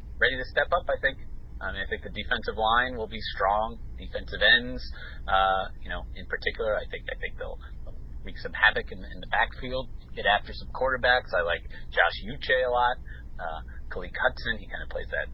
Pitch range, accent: 70-105 Hz, American